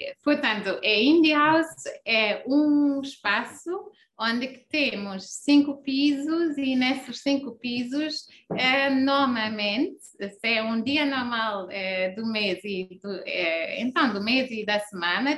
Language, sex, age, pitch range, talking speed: Portuguese, female, 20-39, 220-280 Hz, 135 wpm